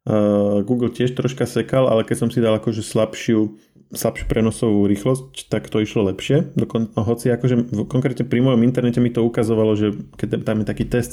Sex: male